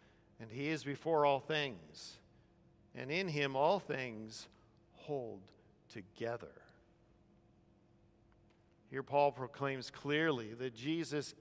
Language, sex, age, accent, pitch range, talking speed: English, male, 50-69, American, 135-190 Hz, 100 wpm